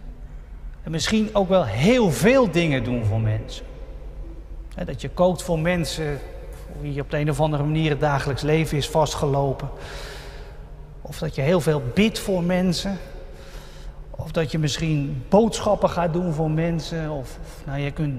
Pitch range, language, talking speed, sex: 135-180 Hz, Dutch, 155 wpm, male